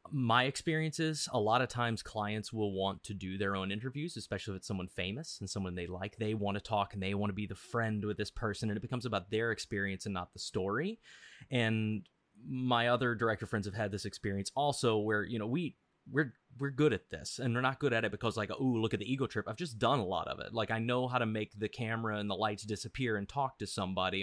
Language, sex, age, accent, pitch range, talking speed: English, male, 20-39, American, 100-120 Hz, 260 wpm